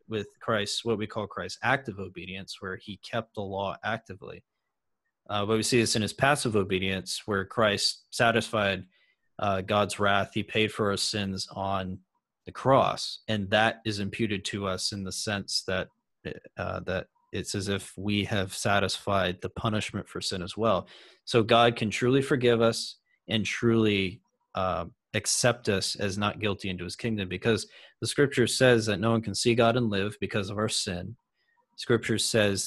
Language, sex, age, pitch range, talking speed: English, male, 30-49, 100-115 Hz, 175 wpm